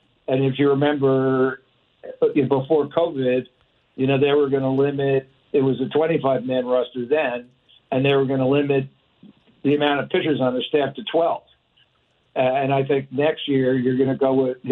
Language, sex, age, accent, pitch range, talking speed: English, male, 60-79, American, 135-150 Hz, 185 wpm